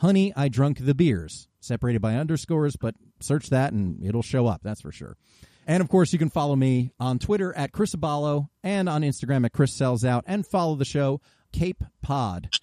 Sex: male